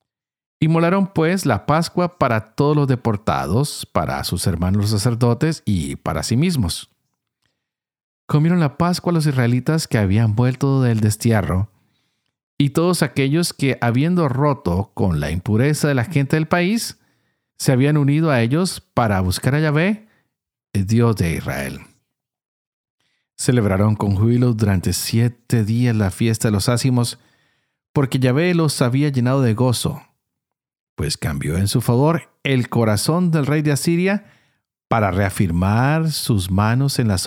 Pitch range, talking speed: 105-150 Hz, 145 wpm